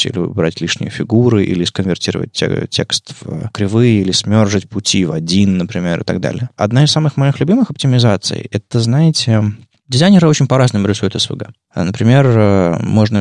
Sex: male